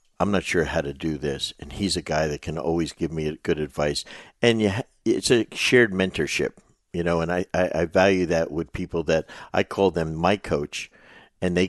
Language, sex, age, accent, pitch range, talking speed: English, male, 60-79, American, 75-90 Hz, 215 wpm